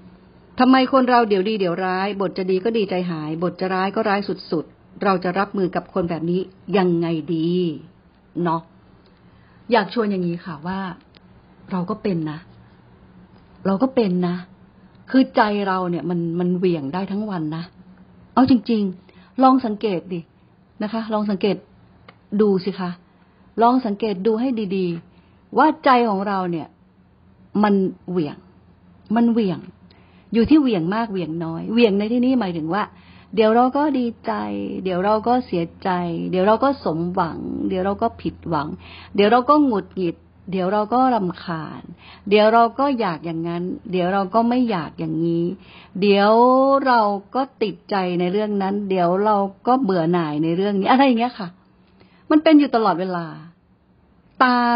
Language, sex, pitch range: Thai, female, 175-230 Hz